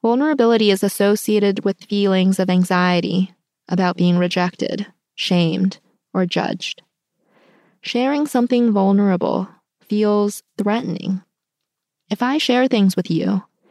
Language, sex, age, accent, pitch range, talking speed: English, female, 20-39, American, 185-220 Hz, 105 wpm